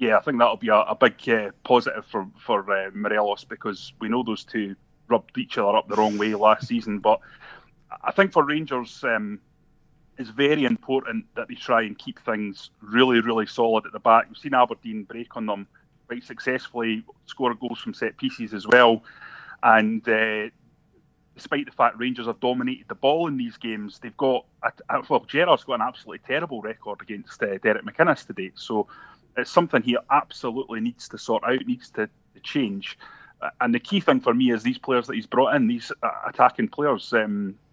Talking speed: 195 wpm